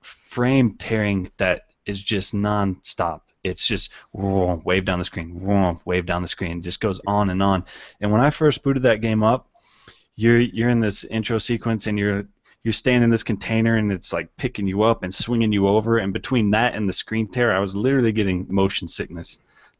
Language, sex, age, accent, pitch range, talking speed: English, male, 20-39, American, 95-115 Hz, 210 wpm